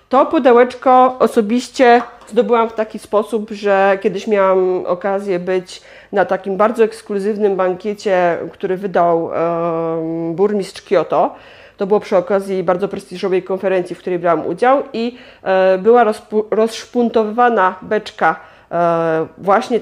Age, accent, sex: 40-59, native, female